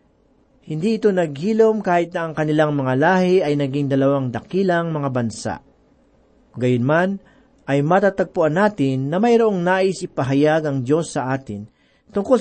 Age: 40-59